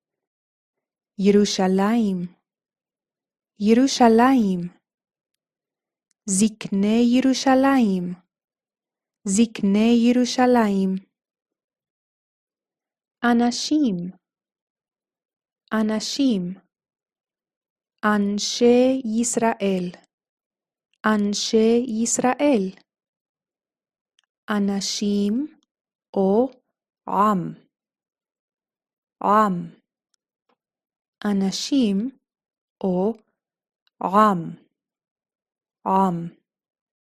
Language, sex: Hebrew, female